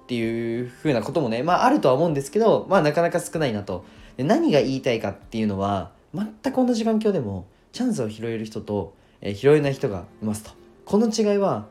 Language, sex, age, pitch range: Japanese, male, 20-39, 105-180 Hz